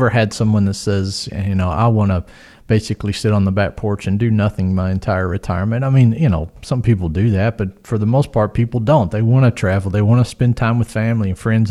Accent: American